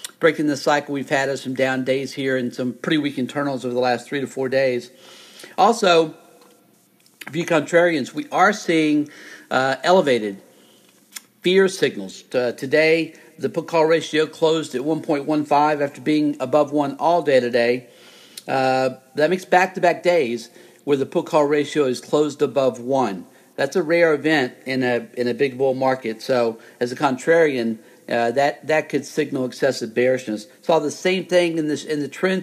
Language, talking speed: English, 165 wpm